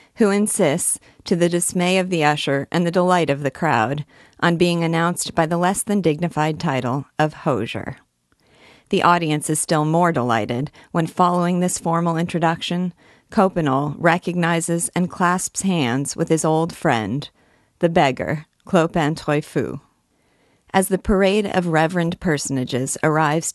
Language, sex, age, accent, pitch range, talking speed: English, female, 40-59, American, 145-175 Hz, 140 wpm